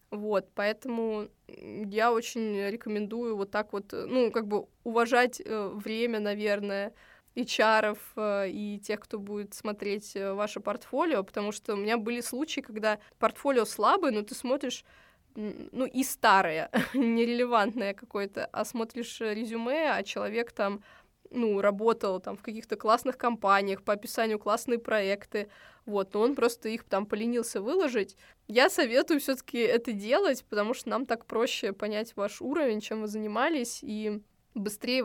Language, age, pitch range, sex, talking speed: Russian, 20-39, 210-245 Hz, female, 140 wpm